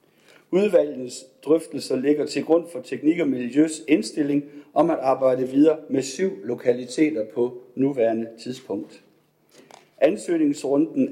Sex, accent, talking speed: male, native, 115 wpm